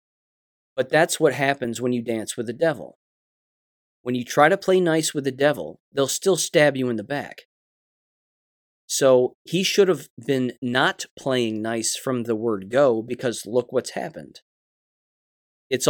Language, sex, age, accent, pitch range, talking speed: English, male, 30-49, American, 120-150 Hz, 160 wpm